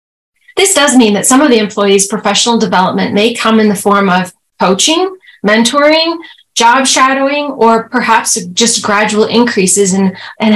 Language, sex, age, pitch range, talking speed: English, female, 30-49, 205-265 Hz, 150 wpm